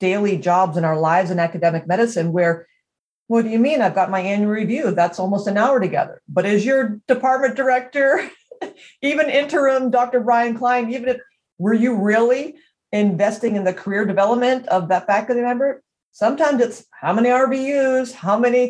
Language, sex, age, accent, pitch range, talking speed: English, female, 40-59, American, 185-245 Hz, 175 wpm